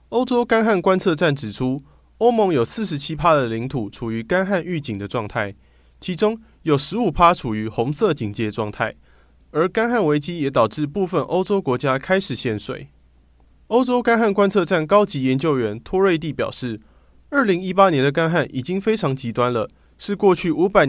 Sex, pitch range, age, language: male, 115-185 Hz, 20-39, Chinese